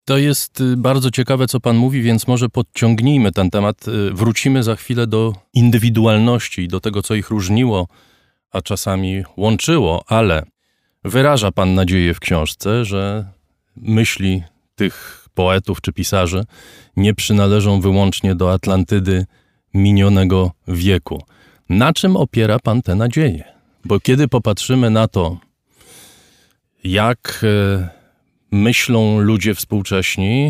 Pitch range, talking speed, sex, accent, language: 95-115 Hz, 120 wpm, male, native, Polish